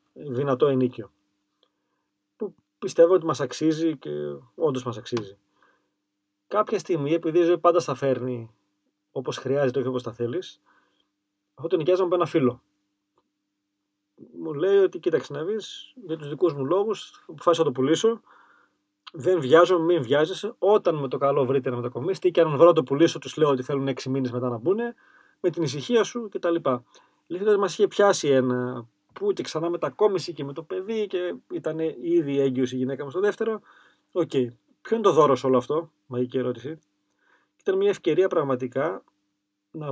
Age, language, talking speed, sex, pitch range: 30-49, Greek, 170 wpm, male, 125-185 Hz